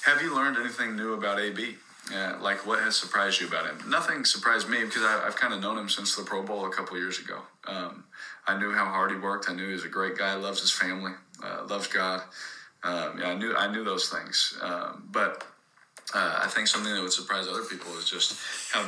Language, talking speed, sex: English, 235 wpm, male